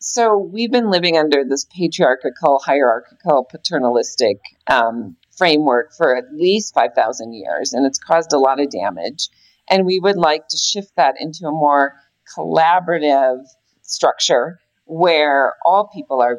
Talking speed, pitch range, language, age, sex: 145 wpm, 130-170 Hz, English, 40-59, female